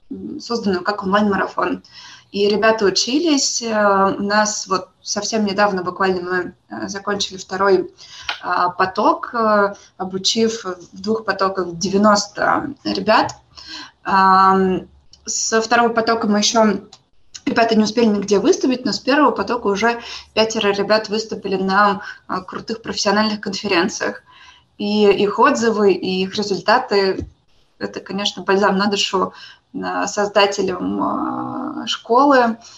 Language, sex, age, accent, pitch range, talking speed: Russian, female, 20-39, native, 195-220 Hz, 105 wpm